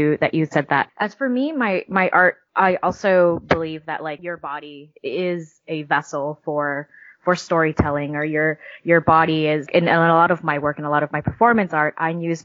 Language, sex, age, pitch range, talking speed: English, female, 20-39, 150-170 Hz, 210 wpm